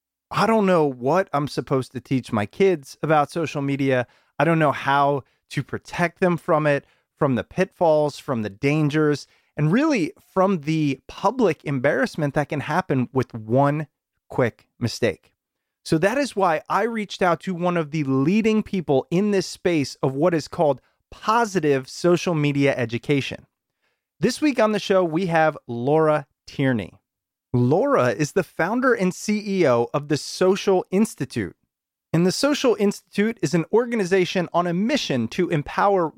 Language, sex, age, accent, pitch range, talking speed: English, male, 30-49, American, 140-190 Hz, 160 wpm